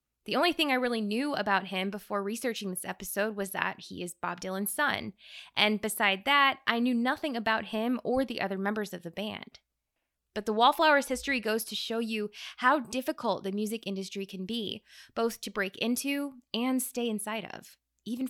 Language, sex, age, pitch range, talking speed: English, female, 20-39, 195-240 Hz, 190 wpm